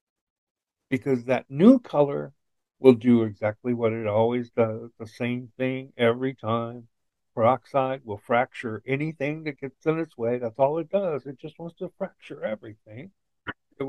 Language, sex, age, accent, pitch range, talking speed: English, male, 60-79, American, 120-155 Hz, 155 wpm